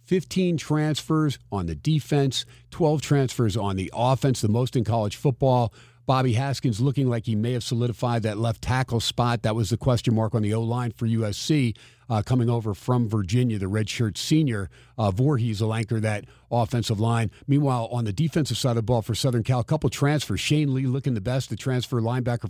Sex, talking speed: male, 195 wpm